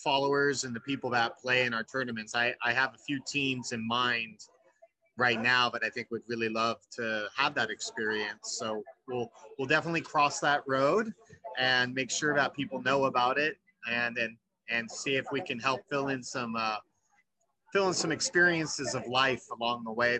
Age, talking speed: 30-49, 195 wpm